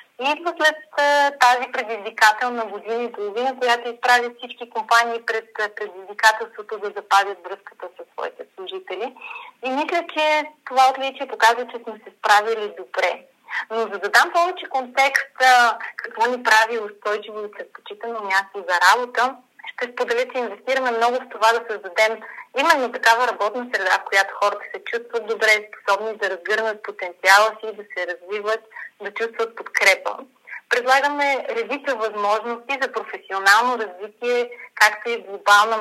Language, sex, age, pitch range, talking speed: Bulgarian, female, 30-49, 210-265 Hz, 140 wpm